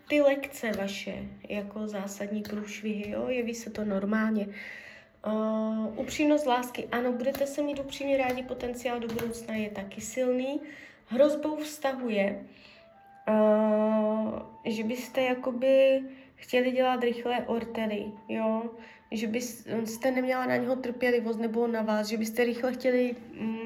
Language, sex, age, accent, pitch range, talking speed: Czech, female, 20-39, native, 215-250 Hz, 130 wpm